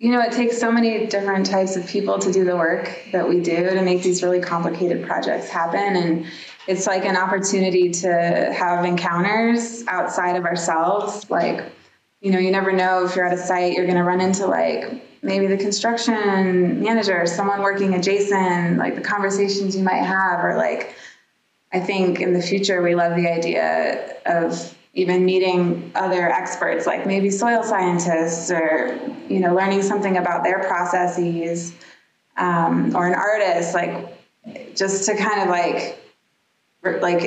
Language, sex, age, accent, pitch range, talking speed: English, female, 20-39, American, 175-195 Hz, 165 wpm